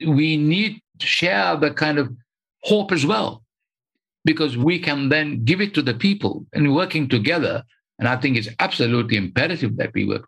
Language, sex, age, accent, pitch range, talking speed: English, male, 60-79, Indian, 105-150 Hz, 180 wpm